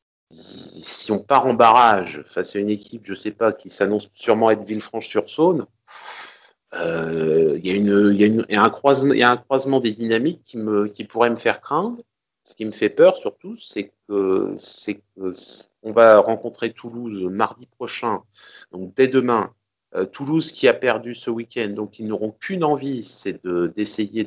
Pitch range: 105-130 Hz